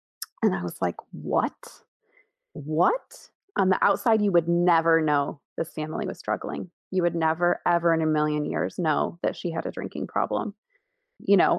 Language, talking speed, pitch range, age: English, 175 wpm, 160-200 Hz, 30-49